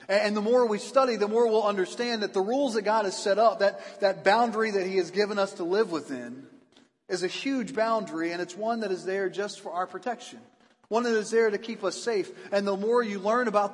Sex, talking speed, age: male, 245 wpm, 40-59